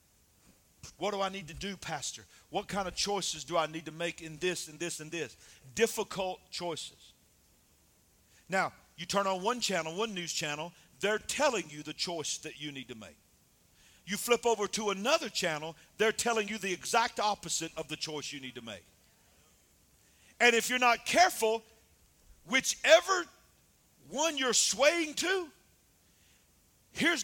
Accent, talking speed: American, 160 wpm